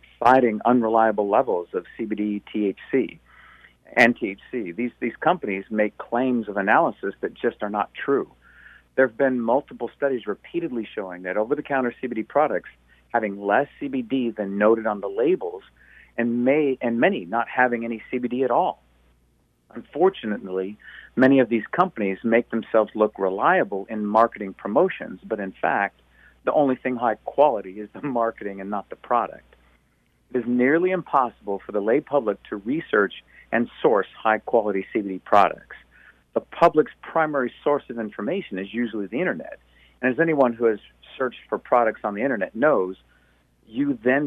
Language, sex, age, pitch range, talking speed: English, male, 50-69, 100-130 Hz, 155 wpm